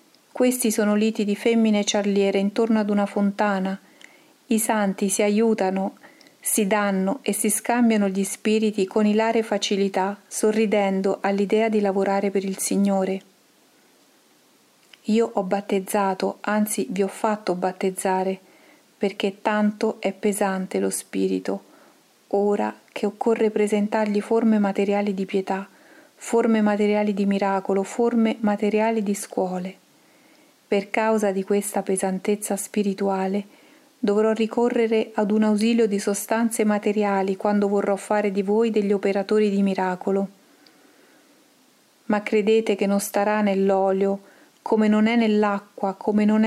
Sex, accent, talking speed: female, native, 125 wpm